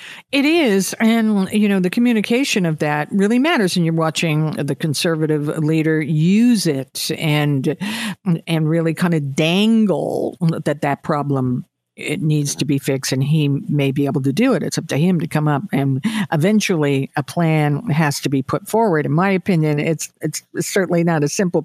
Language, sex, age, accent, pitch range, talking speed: English, female, 50-69, American, 155-205 Hz, 185 wpm